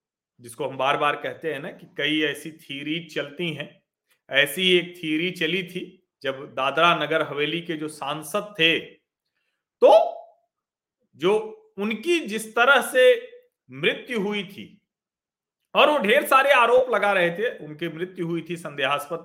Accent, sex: native, male